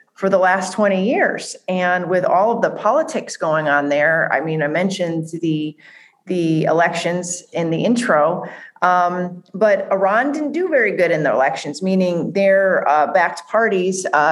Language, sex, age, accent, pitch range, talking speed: English, female, 40-59, American, 165-210 Hz, 170 wpm